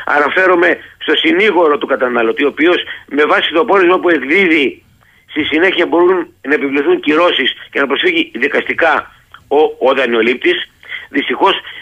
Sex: male